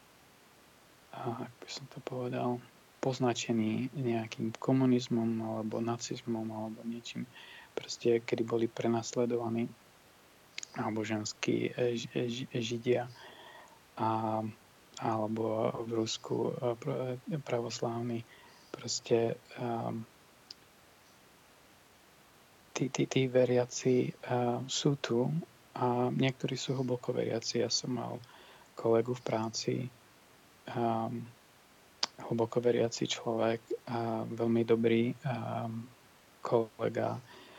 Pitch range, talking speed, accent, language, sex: 115-125 Hz, 85 wpm, Slovak, Czech, male